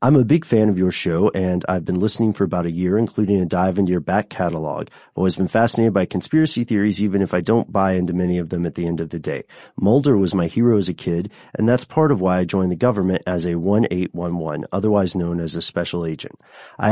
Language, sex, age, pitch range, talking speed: English, male, 30-49, 90-110 Hz, 250 wpm